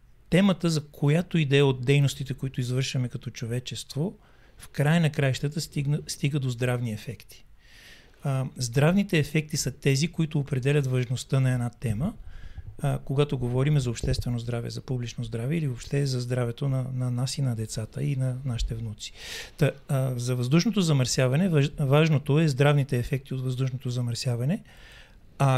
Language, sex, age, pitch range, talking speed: Bulgarian, male, 40-59, 125-150 Hz, 155 wpm